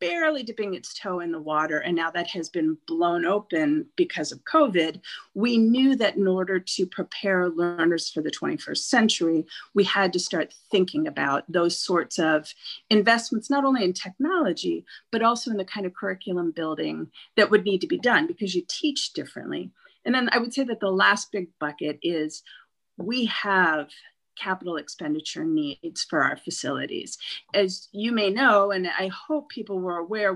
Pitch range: 180-245 Hz